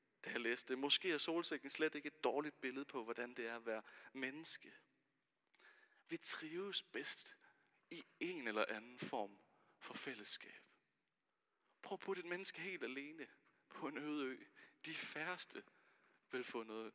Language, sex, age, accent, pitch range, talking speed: Danish, male, 30-49, native, 130-190 Hz, 150 wpm